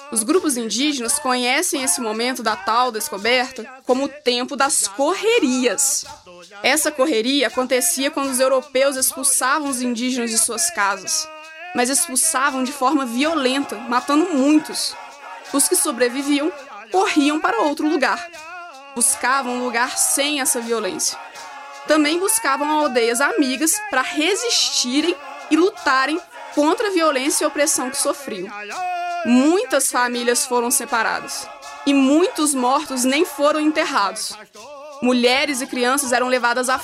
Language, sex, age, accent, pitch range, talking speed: Portuguese, female, 20-39, Brazilian, 250-310 Hz, 125 wpm